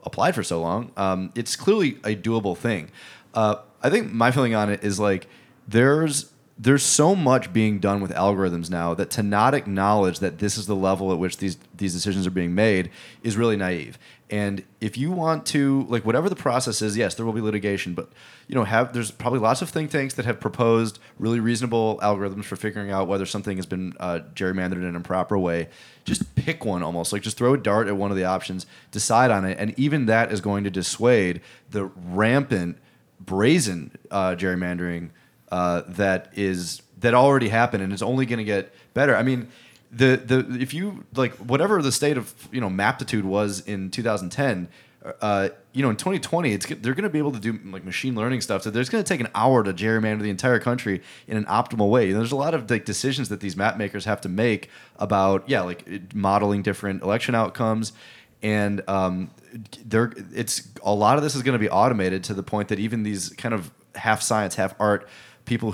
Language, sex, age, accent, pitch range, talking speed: English, male, 30-49, American, 95-120 Hz, 210 wpm